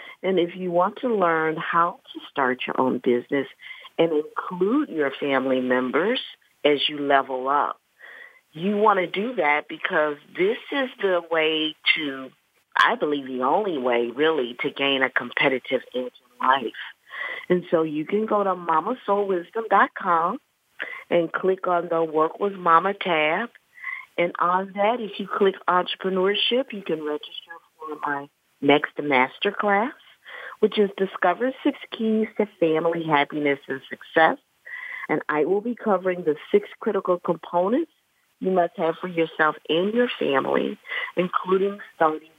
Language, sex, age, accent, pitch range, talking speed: English, female, 50-69, American, 145-195 Hz, 145 wpm